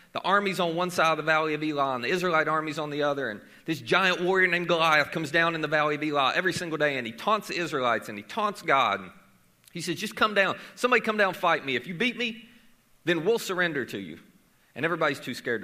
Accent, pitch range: American, 150-210 Hz